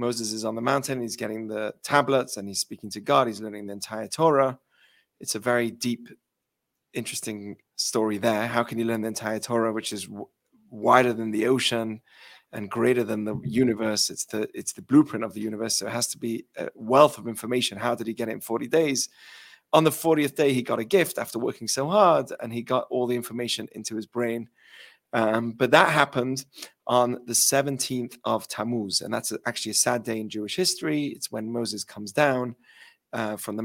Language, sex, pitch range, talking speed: English, male, 110-125 Hz, 205 wpm